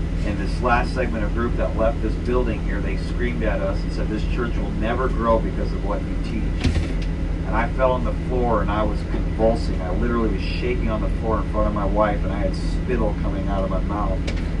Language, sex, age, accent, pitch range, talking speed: English, male, 40-59, American, 80-95 Hz, 240 wpm